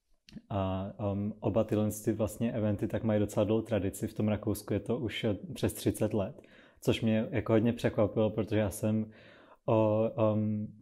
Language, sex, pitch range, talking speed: Czech, male, 105-115 Hz, 160 wpm